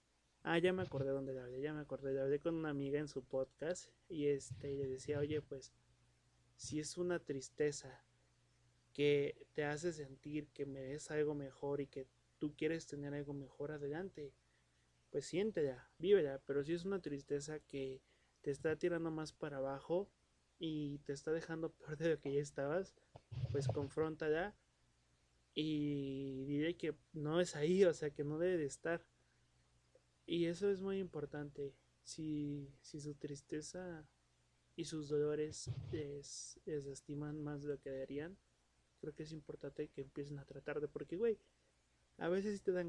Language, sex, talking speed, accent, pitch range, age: Spanish, male, 170 wpm, Mexican, 135-160 Hz, 30-49